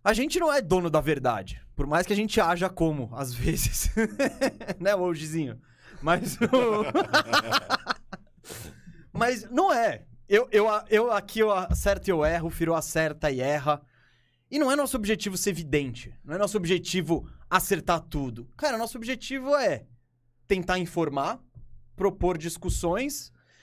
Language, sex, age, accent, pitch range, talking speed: Portuguese, male, 20-39, Brazilian, 155-240 Hz, 145 wpm